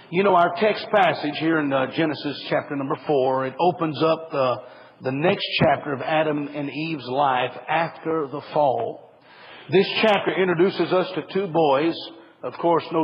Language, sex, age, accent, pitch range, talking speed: English, male, 50-69, American, 155-185 Hz, 170 wpm